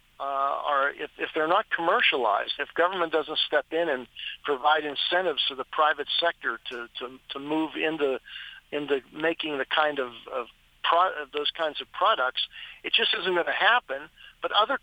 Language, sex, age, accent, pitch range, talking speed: English, male, 50-69, American, 140-170 Hz, 175 wpm